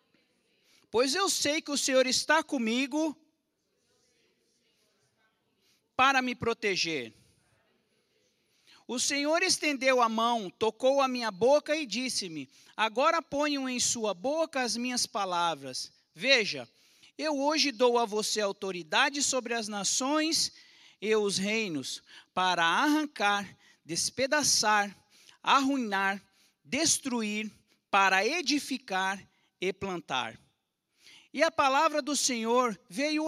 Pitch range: 200-295 Hz